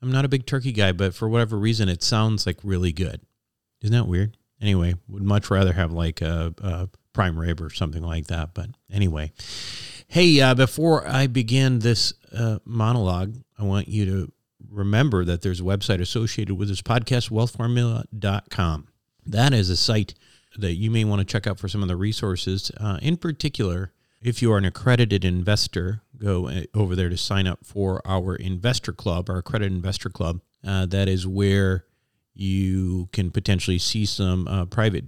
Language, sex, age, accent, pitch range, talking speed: English, male, 40-59, American, 95-115 Hz, 180 wpm